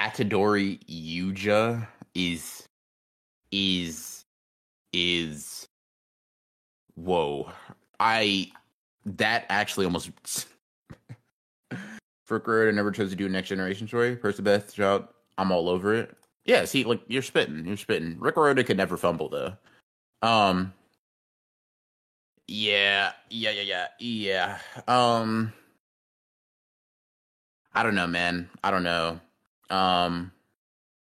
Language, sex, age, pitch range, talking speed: English, male, 20-39, 90-125 Hz, 100 wpm